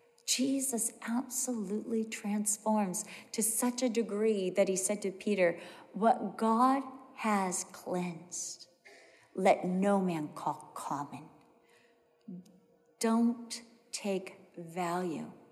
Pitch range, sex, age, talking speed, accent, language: 185-255 Hz, female, 40-59, 95 wpm, American, English